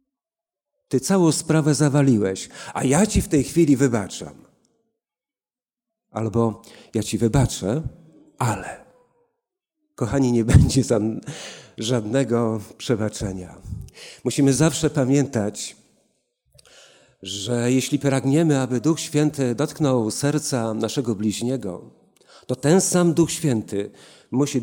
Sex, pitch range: male, 115-165 Hz